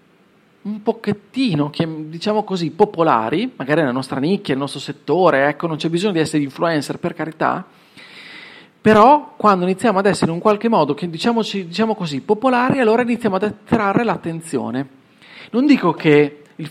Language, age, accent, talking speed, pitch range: Italian, 40-59, native, 160 wpm, 140-190 Hz